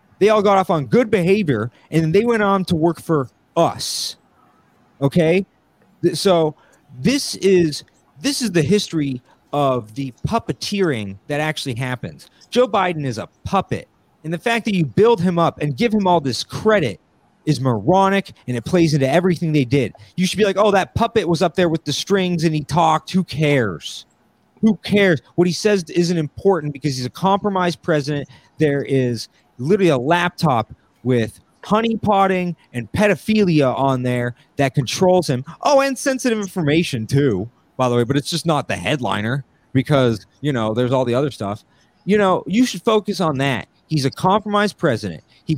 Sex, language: male, English